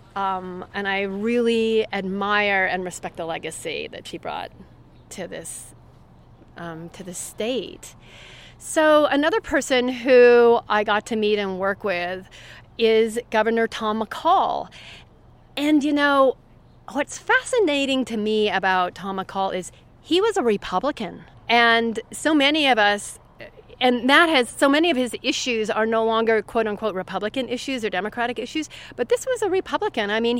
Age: 40-59